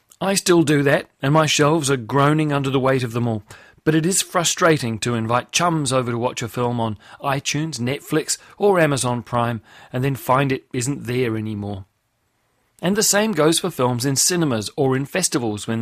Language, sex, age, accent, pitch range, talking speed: English, male, 40-59, British, 120-150 Hz, 195 wpm